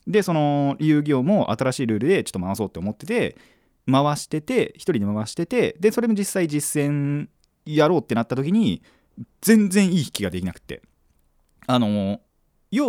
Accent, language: native, Japanese